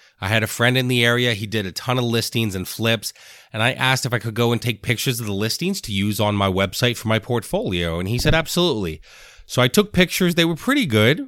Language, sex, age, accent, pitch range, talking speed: English, male, 30-49, American, 105-140 Hz, 255 wpm